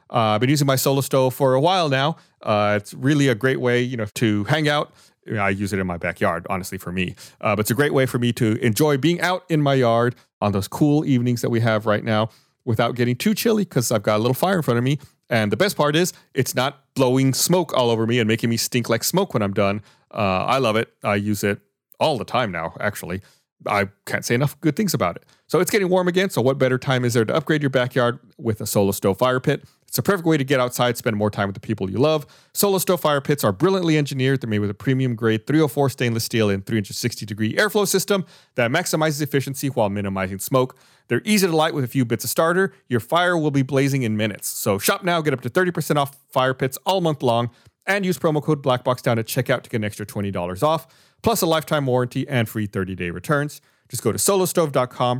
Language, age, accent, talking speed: English, 30-49, American, 250 wpm